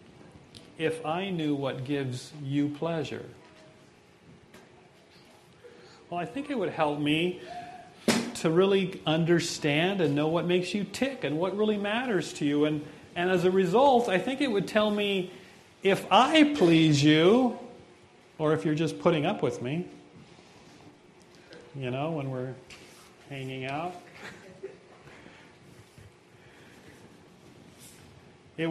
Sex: male